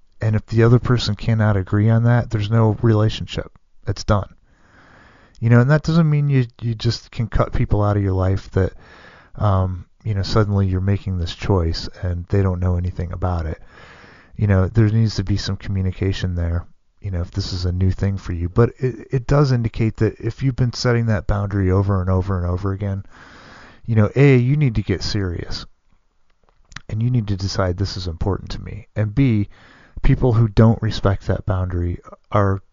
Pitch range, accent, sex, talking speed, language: 95-115 Hz, American, male, 200 wpm, English